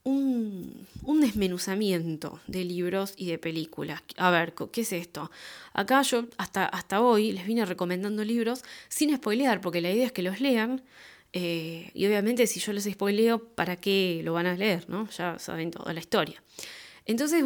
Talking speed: 170 wpm